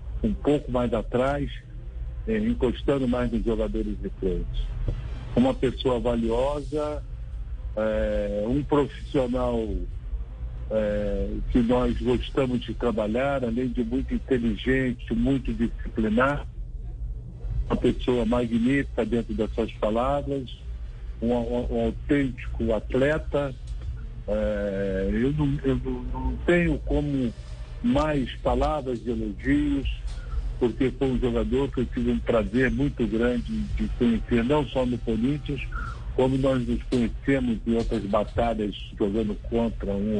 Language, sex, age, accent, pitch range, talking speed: Spanish, male, 60-79, Brazilian, 105-125 Hz, 115 wpm